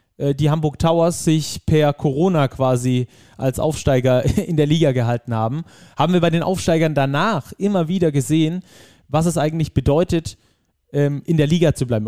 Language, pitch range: German, 130-160 Hz